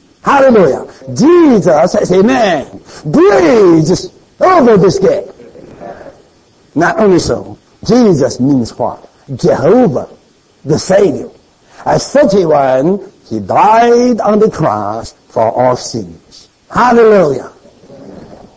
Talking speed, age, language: 95 wpm, 60-79, English